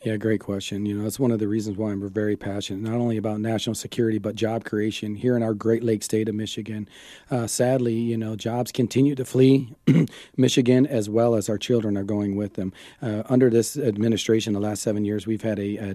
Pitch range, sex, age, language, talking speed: 105-120 Hz, male, 40-59, English, 225 wpm